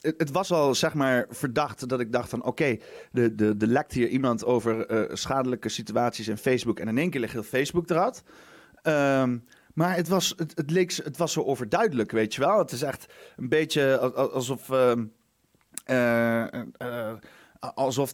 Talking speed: 140 wpm